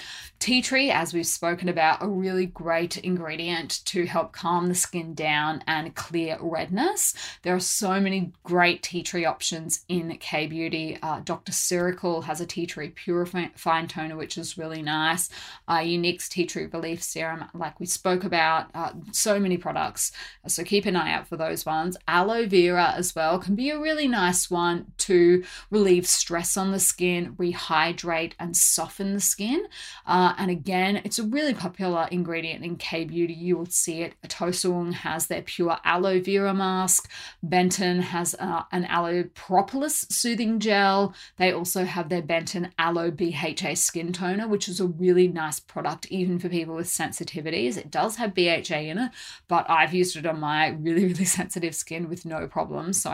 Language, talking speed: English, 175 wpm